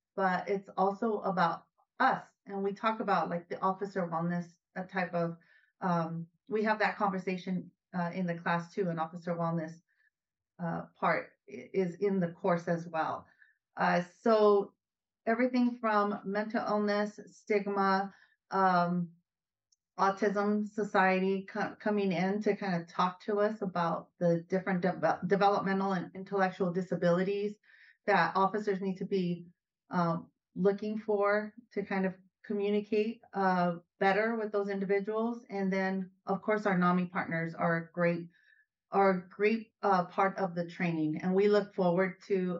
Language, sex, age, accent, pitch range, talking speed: English, female, 30-49, American, 175-205 Hz, 140 wpm